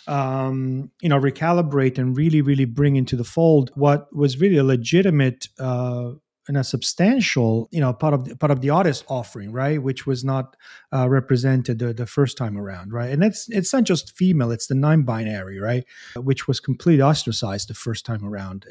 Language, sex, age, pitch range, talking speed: English, male, 30-49, 125-155 Hz, 195 wpm